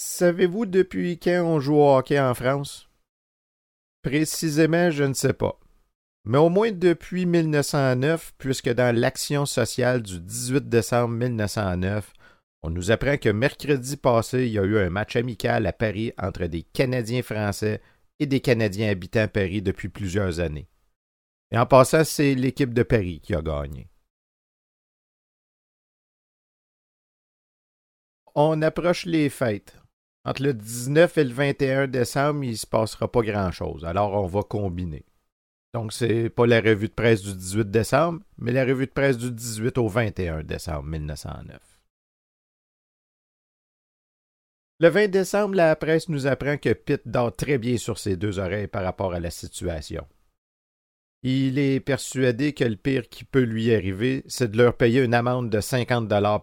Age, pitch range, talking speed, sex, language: 50-69, 105-140 Hz, 155 wpm, male, French